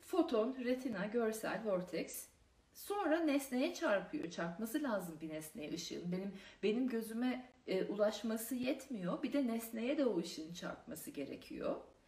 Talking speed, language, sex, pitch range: 125 wpm, Turkish, female, 195-300 Hz